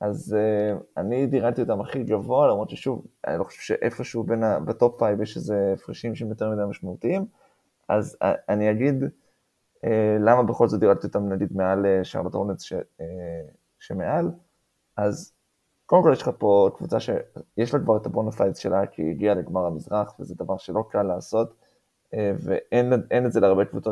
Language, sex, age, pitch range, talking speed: English, male, 20-39, 95-120 Hz, 105 wpm